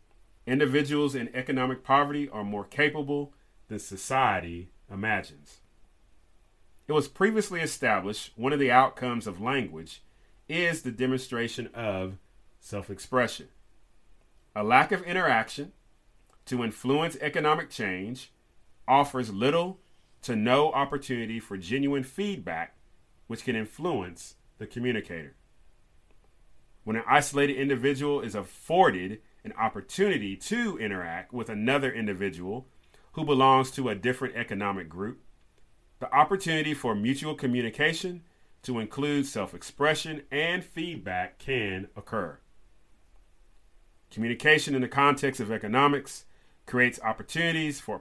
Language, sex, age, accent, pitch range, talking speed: English, male, 30-49, American, 100-145 Hz, 110 wpm